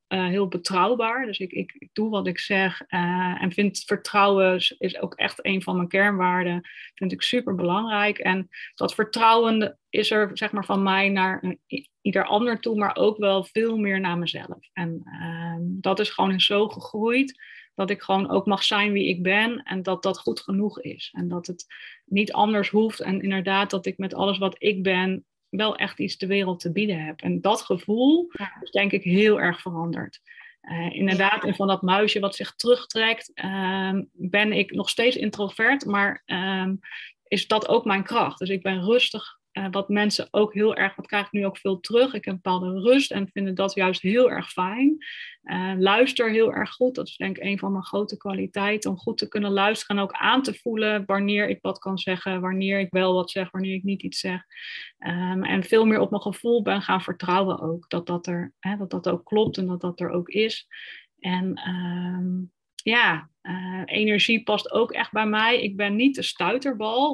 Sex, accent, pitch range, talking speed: female, Dutch, 185-215 Hz, 200 wpm